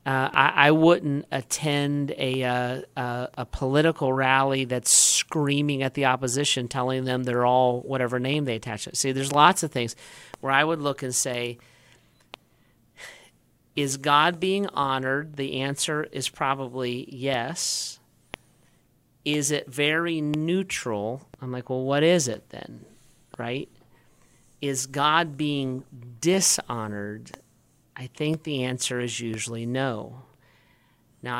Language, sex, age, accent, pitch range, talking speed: English, male, 40-59, American, 125-145 Hz, 130 wpm